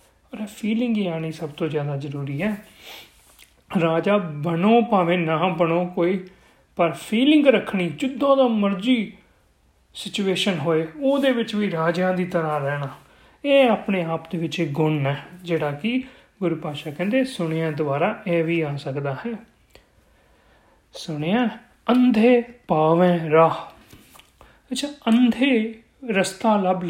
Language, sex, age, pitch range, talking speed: Punjabi, male, 30-49, 170-230 Hz, 115 wpm